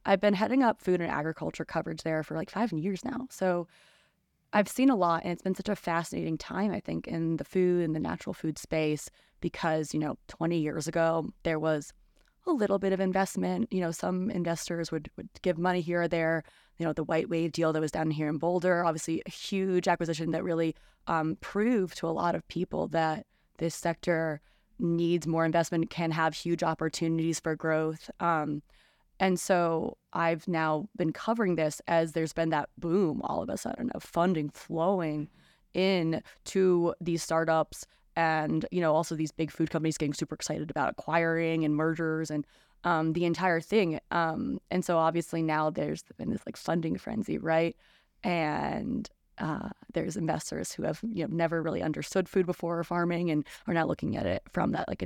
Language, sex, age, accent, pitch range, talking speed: English, female, 20-39, American, 160-180 Hz, 195 wpm